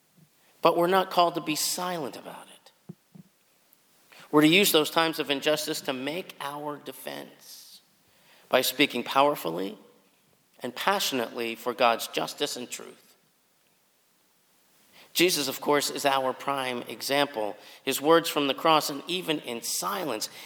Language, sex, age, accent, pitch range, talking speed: English, male, 50-69, American, 130-165 Hz, 135 wpm